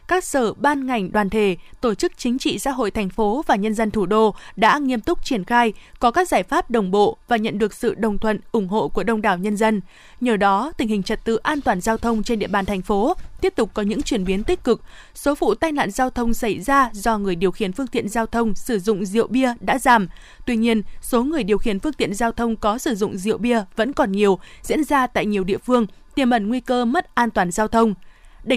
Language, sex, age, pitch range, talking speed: Vietnamese, female, 20-39, 210-265 Hz, 255 wpm